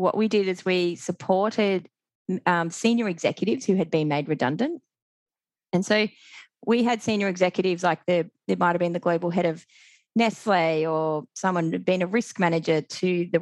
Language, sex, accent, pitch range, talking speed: English, female, Australian, 165-210 Hz, 185 wpm